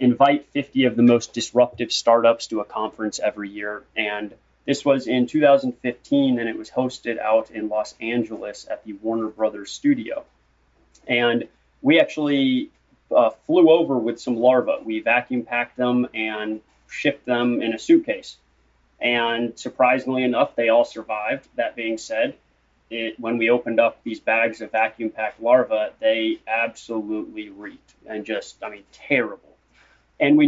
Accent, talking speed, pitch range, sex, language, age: American, 155 wpm, 110-140 Hz, male, English, 30-49